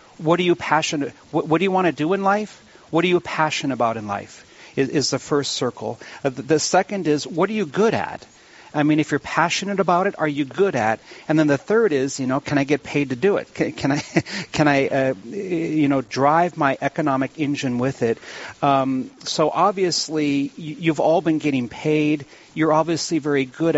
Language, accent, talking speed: English, American, 210 wpm